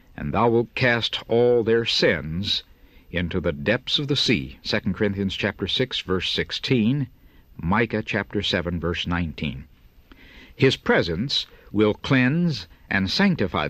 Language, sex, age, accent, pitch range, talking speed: English, male, 60-79, American, 85-120 Hz, 130 wpm